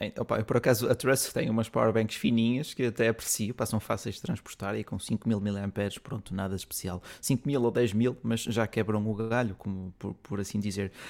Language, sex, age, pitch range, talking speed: Portuguese, male, 20-39, 110-130 Hz, 200 wpm